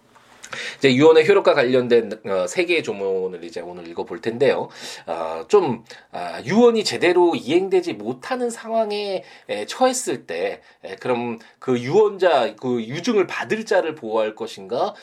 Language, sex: Korean, male